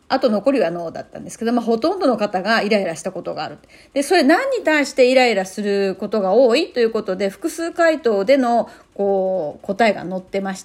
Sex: female